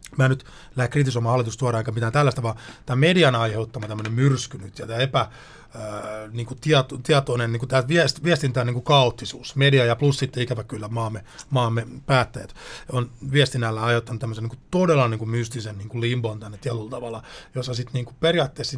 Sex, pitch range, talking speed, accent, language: male, 120-155 Hz, 155 wpm, native, Finnish